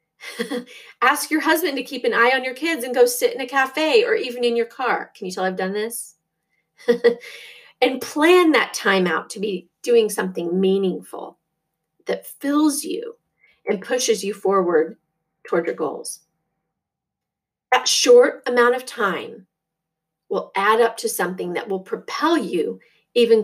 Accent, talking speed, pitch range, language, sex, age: American, 160 wpm, 185-265 Hz, English, female, 40-59